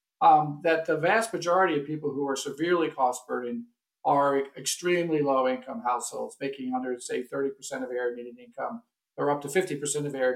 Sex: male